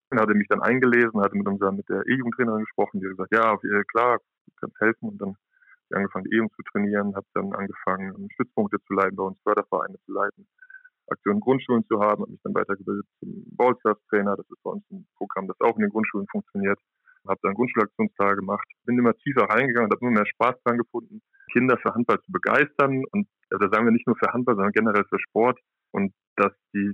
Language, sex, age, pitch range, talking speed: German, male, 20-39, 100-125 Hz, 220 wpm